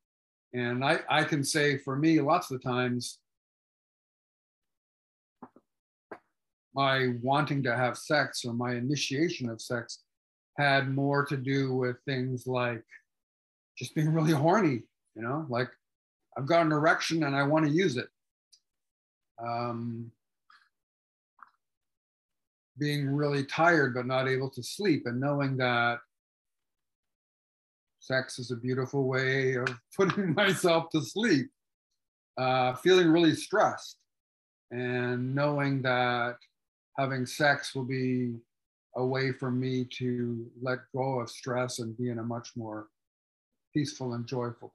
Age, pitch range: 50-69, 120-140 Hz